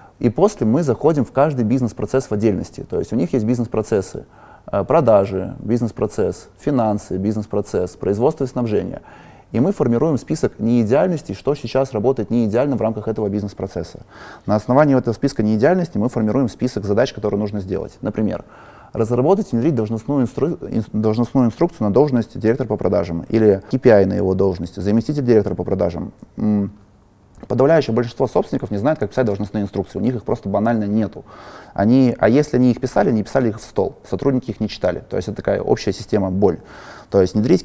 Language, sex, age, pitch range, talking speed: Russian, male, 20-39, 105-130 Hz, 170 wpm